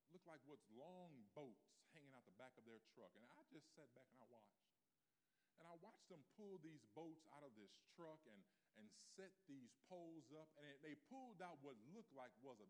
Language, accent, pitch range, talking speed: English, American, 130-175 Hz, 215 wpm